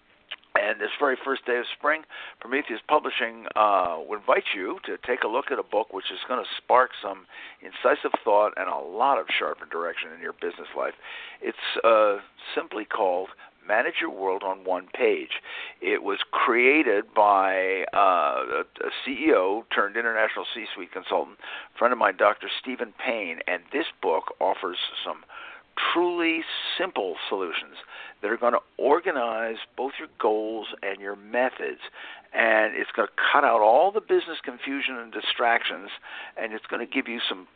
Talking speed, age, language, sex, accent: 165 wpm, 60-79, English, male, American